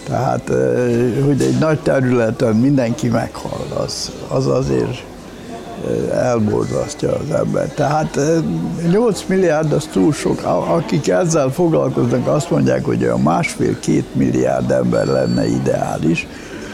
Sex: male